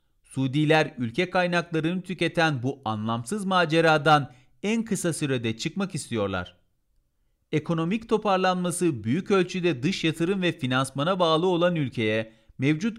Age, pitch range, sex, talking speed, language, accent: 40-59, 130-180 Hz, male, 110 wpm, Turkish, native